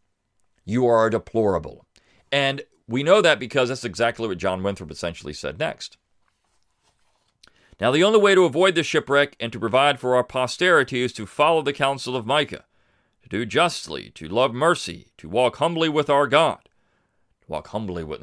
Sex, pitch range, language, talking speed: male, 100-160 Hz, English, 170 wpm